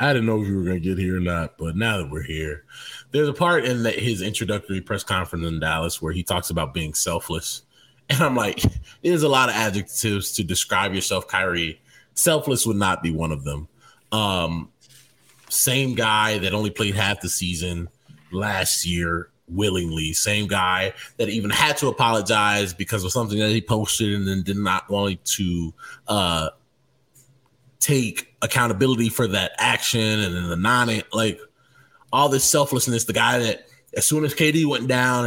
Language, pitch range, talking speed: English, 95-135 Hz, 180 wpm